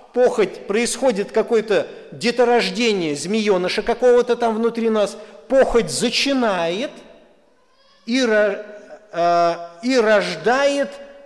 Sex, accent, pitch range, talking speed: male, native, 185-250 Hz, 75 wpm